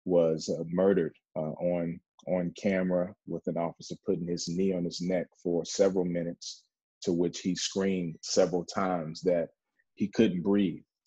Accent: American